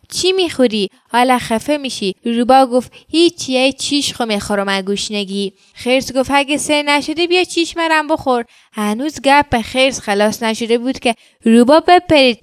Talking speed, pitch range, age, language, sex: 155 wpm, 215-260 Hz, 10-29, Persian, female